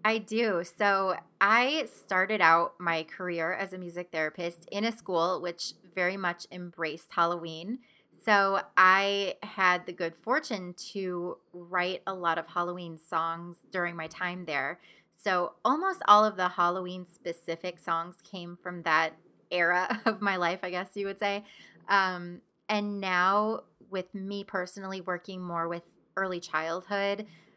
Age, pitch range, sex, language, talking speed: 20-39, 170-205 Hz, female, English, 150 wpm